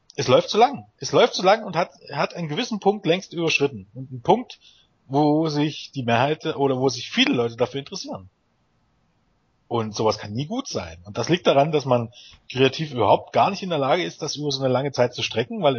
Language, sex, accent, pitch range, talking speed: German, male, German, 120-165 Hz, 225 wpm